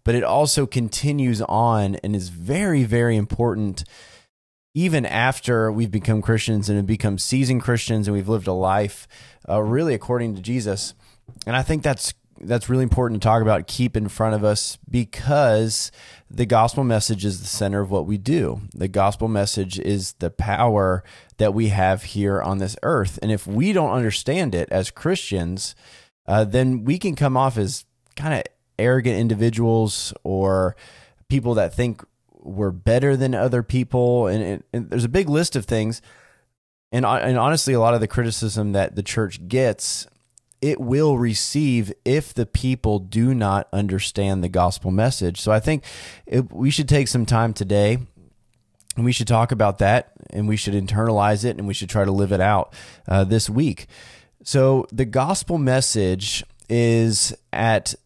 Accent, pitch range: American, 100-125 Hz